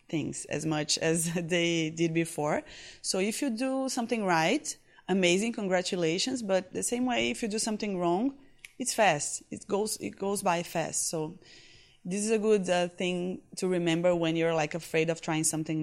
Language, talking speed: English, 180 wpm